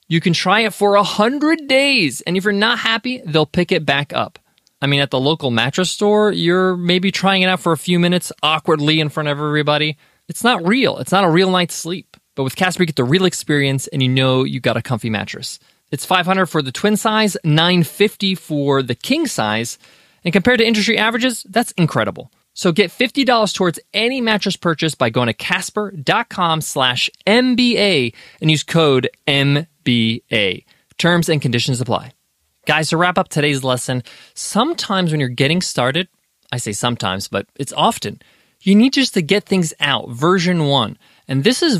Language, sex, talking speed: English, male, 190 wpm